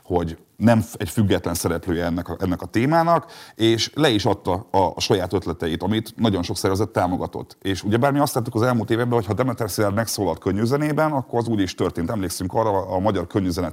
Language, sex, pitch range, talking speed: Hungarian, male, 90-115 Hz, 210 wpm